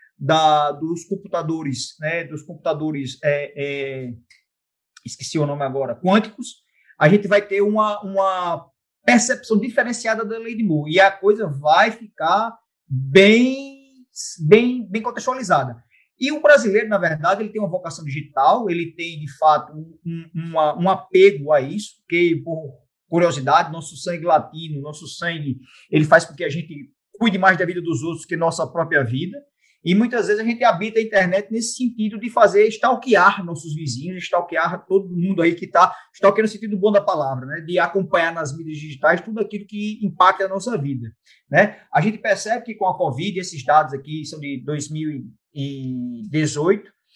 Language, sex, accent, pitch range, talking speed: Portuguese, male, Brazilian, 155-215 Hz, 165 wpm